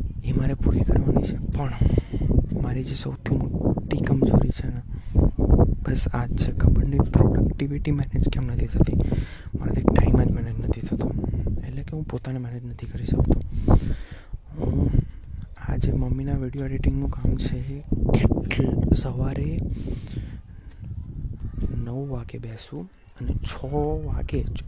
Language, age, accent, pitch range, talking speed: Gujarati, 20-39, native, 105-135 Hz, 75 wpm